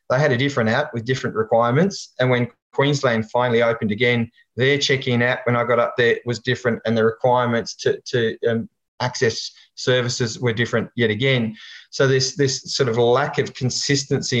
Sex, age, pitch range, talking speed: male, 20-39, 120-135 Hz, 185 wpm